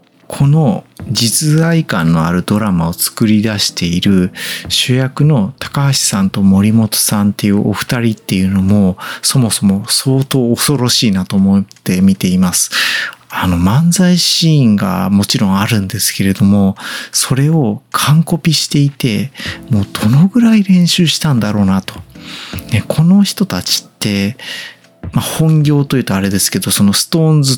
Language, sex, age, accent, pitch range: Japanese, male, 40-59, native, 100-150 Hz